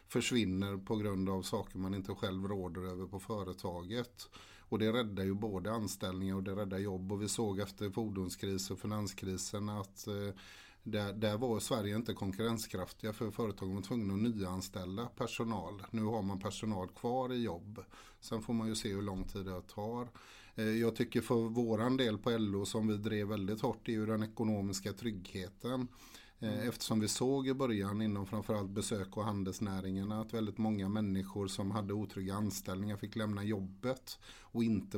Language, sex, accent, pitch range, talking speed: English, male, Swedish, 100-115 Hz, 175 wpm